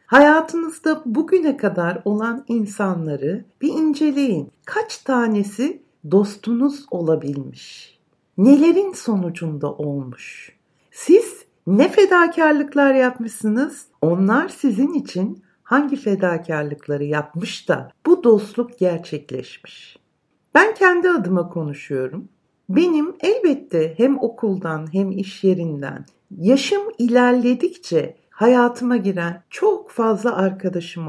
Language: Turkish